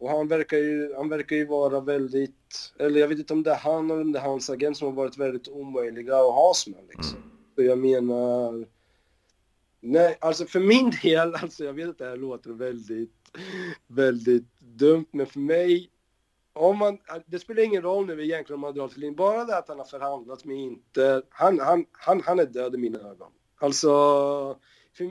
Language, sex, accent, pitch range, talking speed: Swedish, male, native, 135-180 Hz, 200 wpm